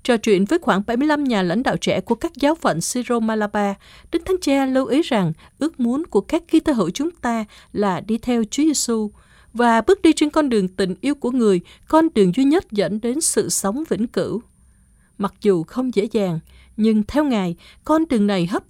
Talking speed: 215 wpm